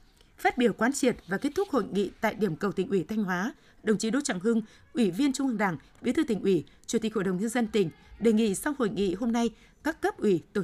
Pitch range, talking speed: 195-245 Hz, 270 wpm